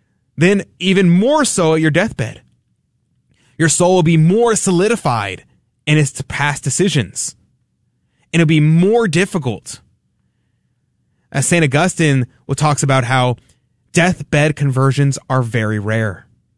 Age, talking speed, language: 20-39, 120 wpm, English